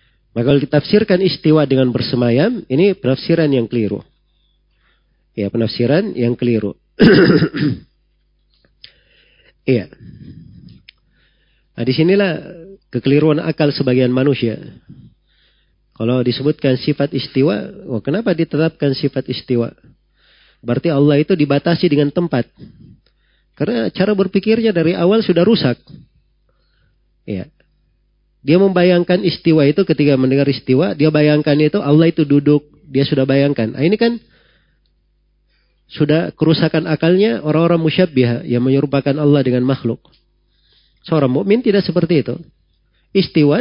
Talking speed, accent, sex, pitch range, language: 110 wpm, native, male, 125-170 Hz, Indonesian